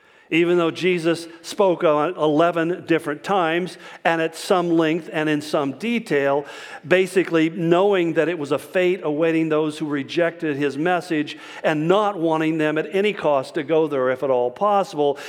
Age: 50-69